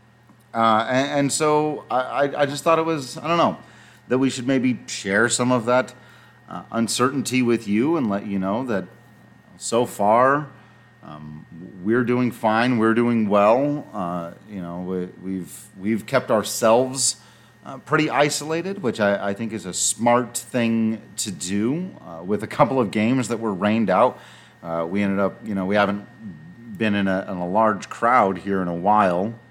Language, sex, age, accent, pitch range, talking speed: English, male, 40-59, American, 105-130 Hz, 180 wpm